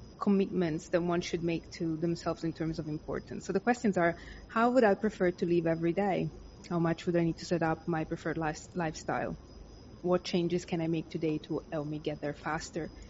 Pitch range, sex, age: 160-185 Hz, female, 20-39